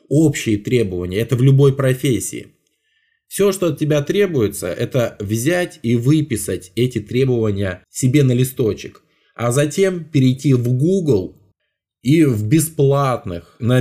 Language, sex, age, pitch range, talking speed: Russian, male, 20-39, 110-145 Hz, 115 wpm